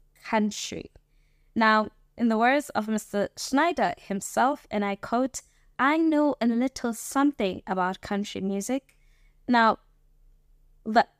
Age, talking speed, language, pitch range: 20-39, 120 wpm, English, 200-255 Hz